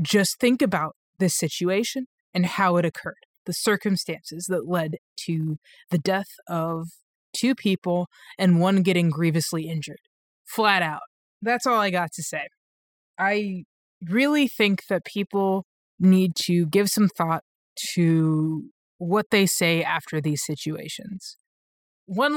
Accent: American